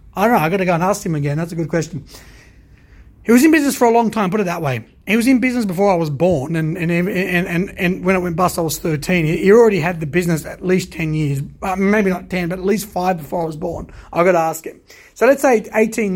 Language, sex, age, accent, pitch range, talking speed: English, male, 30-49, Australian, 185-235 Hz, 280 wpm